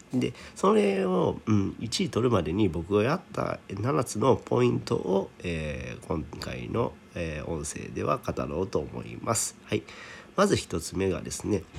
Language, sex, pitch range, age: Japanese, male, 85-120 Hz, 40-59